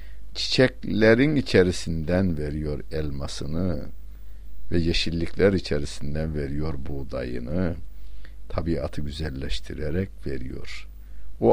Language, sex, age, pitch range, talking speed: Turkish, male, 60-79, 75-100 Hz, 70 wpm